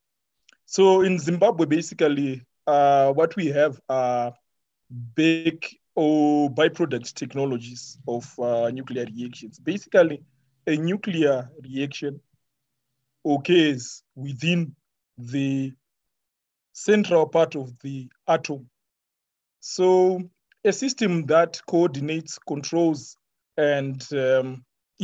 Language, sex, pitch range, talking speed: English, male, 130-160 Hz, 90 wpm